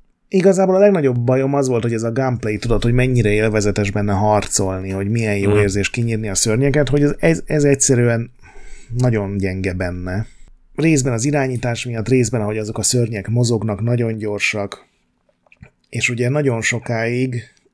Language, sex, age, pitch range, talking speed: Hungarian, male, 30-49, 100-120 Hz, 155 wpm